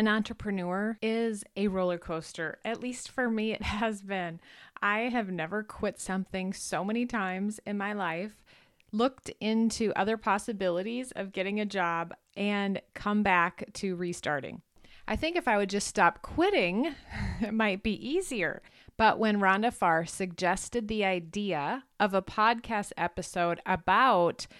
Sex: female